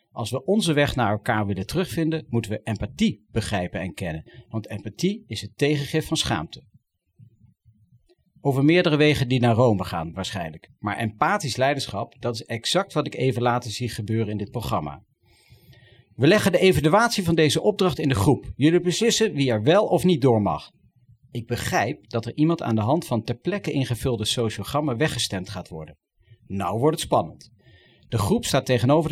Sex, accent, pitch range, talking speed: male, Dutch, 110-150 Hz, 180 wpm